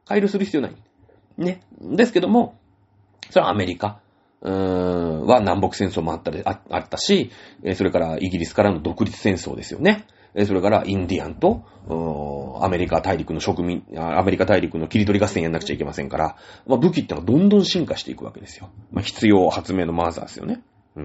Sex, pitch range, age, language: male, 95-135 Hz, 30-49, Japanese